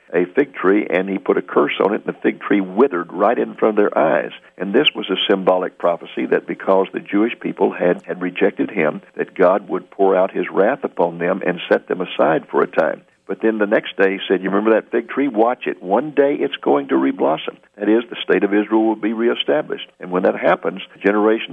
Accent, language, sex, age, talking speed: American, English, male, 50-69, 240 wpm